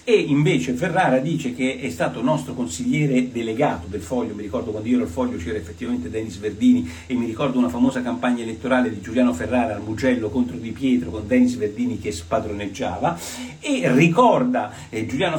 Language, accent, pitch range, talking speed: Italian, native, 110-165 Hz, 180 wpm